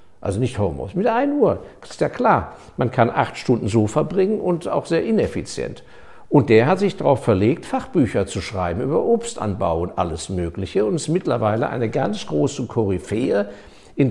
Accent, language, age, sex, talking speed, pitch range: German, German, 60-79, male, 180 wpm, 110-160 Hz